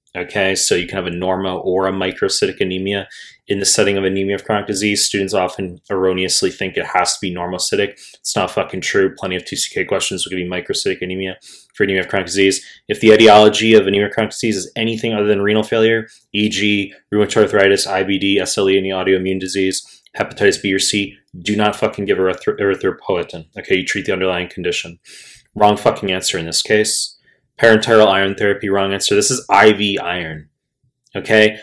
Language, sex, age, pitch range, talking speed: English, male, 20-39, 95-110 Hz, 185 wpm